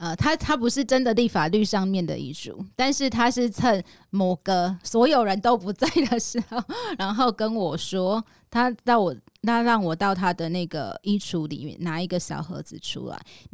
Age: 20-39